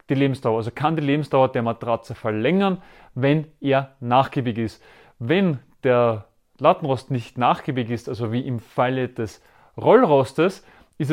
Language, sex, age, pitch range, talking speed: German, male, 30-49, 125-160 Hz, 140 wpm